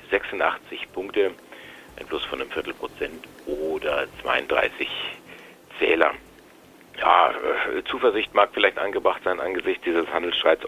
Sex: male